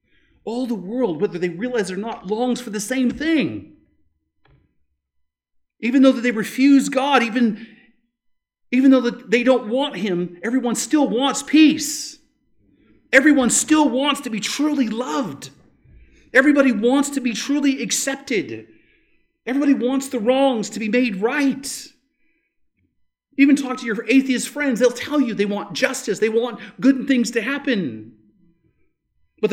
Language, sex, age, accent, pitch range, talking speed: English, male, 40-59, American, 205-270 Hz, 140 wpm